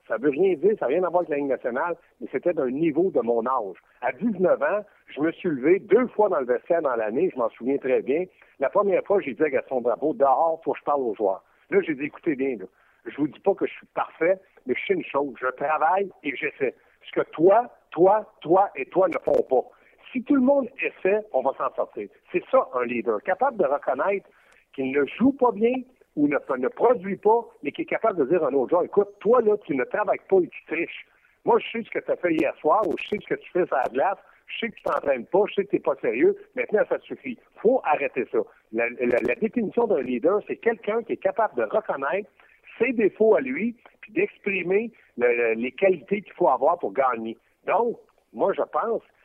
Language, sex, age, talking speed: French, male, 60-79, 255 wpm